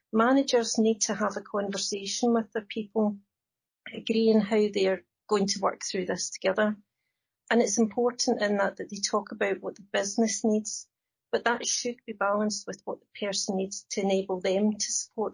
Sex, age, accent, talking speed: female, 40-59, British, 180 wpm